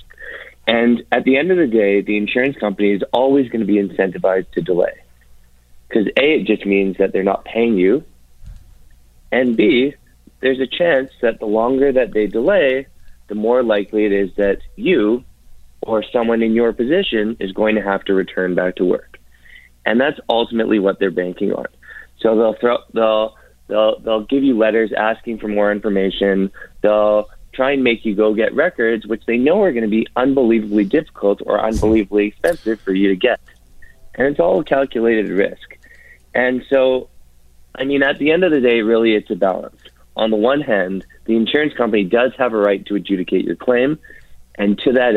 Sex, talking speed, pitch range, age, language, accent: male, 185 wpm, 100-120 Hz, 20-39, English, American